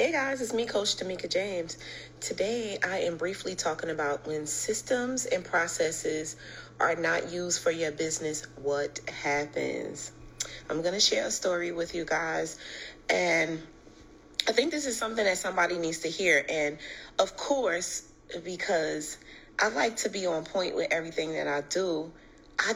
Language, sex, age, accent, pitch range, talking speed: English, female, 30-49, American, 160-205 Hz, 160 wpm